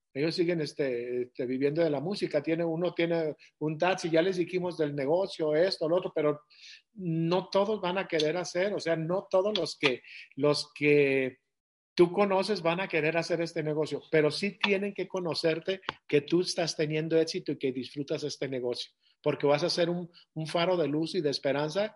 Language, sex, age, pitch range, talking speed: Spanish, male, 50-69, 145-175 Hz, 195 wpm